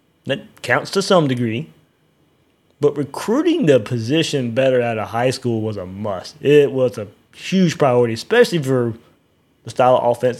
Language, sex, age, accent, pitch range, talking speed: English, male, 30-49, American, 115-150 Hz, 160 wpm